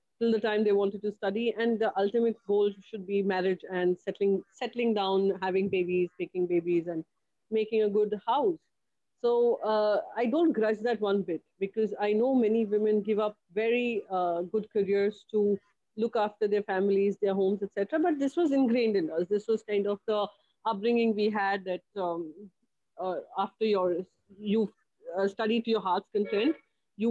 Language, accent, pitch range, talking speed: English, Indian, 190-225 Hz, 175 wpm